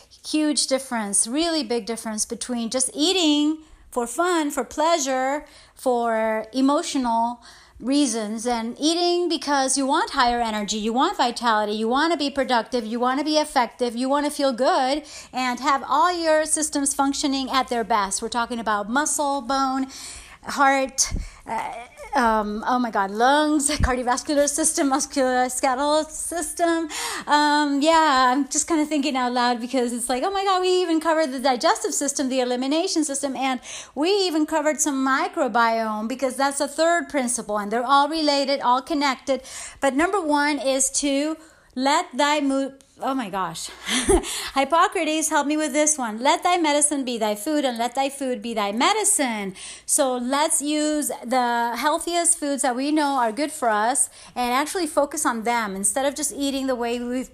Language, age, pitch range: English, 30-49, 245-305 Hz